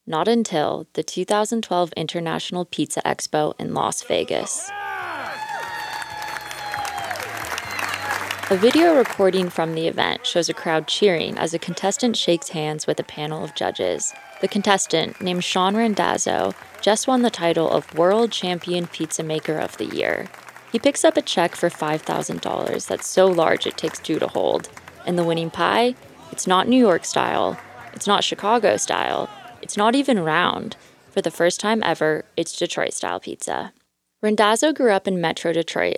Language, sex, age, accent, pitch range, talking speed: English, female, 20-39, American, 170-225 Hz, 155 wpm